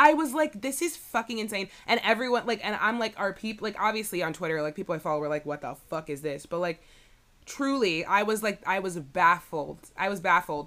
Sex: female